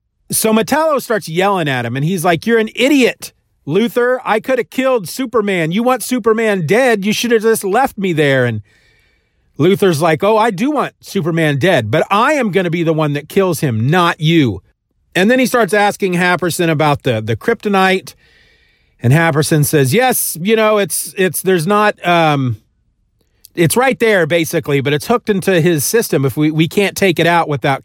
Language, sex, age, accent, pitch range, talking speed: English, male, 40-59, American, 145-215 Hz, 190 wpm